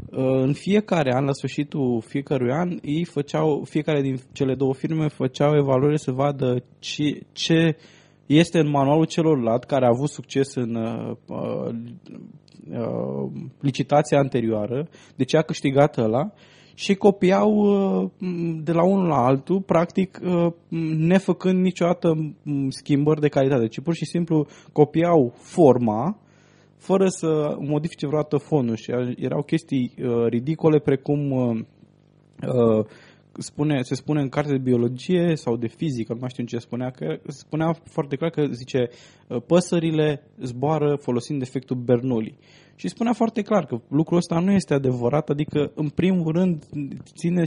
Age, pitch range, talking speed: 20-39, 130-165 Hz, 140 wpm